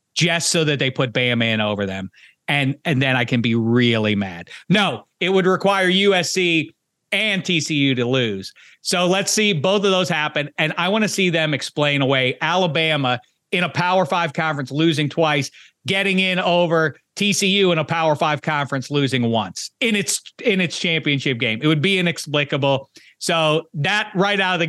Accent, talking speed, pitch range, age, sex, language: American, 185 wpm, 130-180 Hz, 40-59, male, English